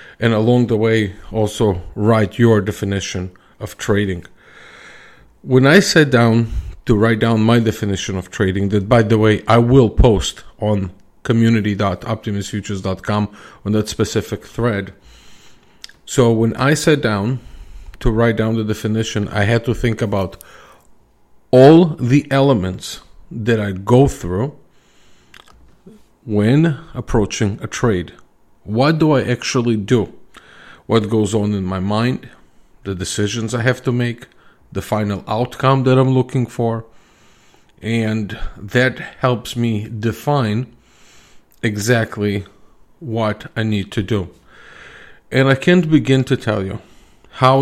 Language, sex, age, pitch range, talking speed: English, male, 40-59, 105-125 Hz, 130 wpm